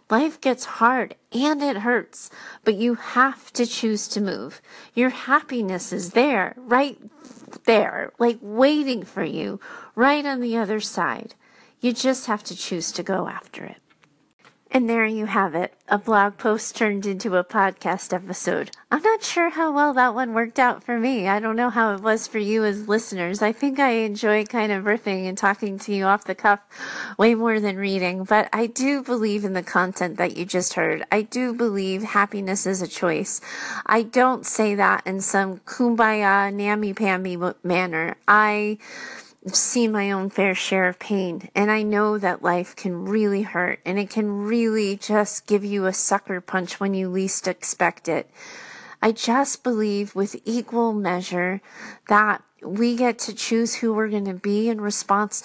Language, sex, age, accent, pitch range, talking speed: English, female, 30-49, American, 195-235 Hz, 180 wpm